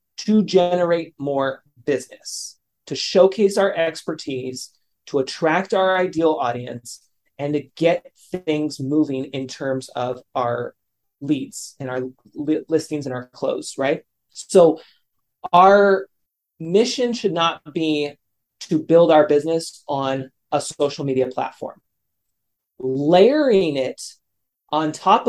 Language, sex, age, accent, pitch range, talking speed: English, male, 30-49, American, 135-175 Hz, 115 wpm